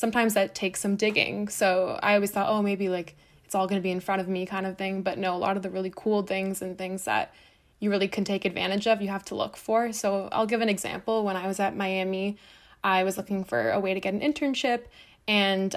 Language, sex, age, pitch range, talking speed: English, female, 20-39, 190-205 Hz, 260 wpm